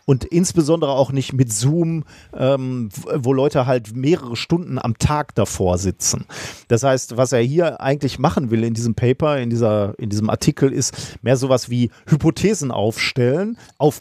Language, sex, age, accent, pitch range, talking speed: German, male, 40-59, German, 115-155 Hz, 165 wpm